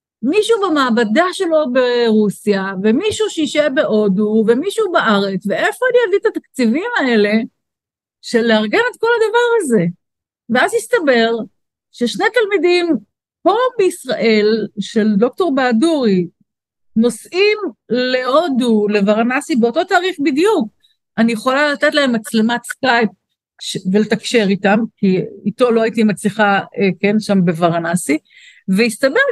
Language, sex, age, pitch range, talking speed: Hebrew, female, 50-69, 220-345 Hz, 110 wpm